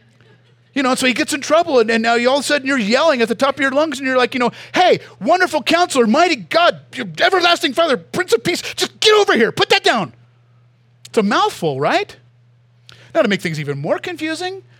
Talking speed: 230 wpm